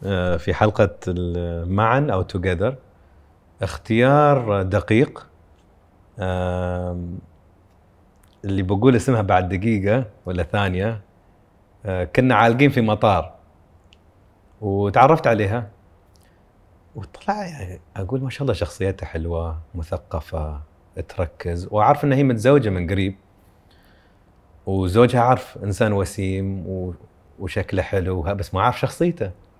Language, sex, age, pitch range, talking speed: English, male, 30-49, 90-115 Hz, 90 wpm